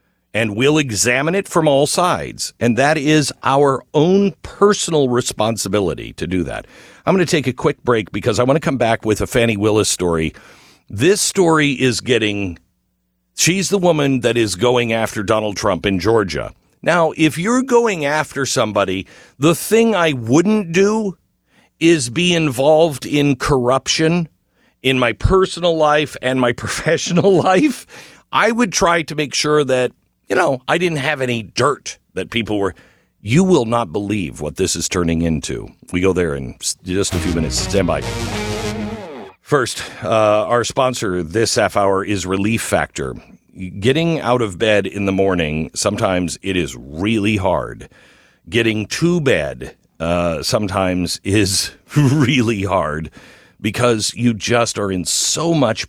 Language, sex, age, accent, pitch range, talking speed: English, male, 50-69, American, 100-155 Hz, 160 wpm